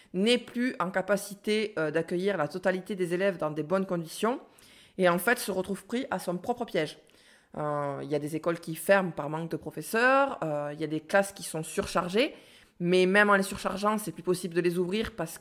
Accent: French